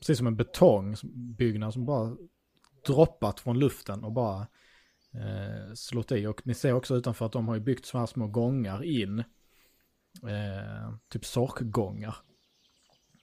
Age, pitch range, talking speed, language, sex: 30-49, 105-125 Hz, 145 wpm, Swedish, male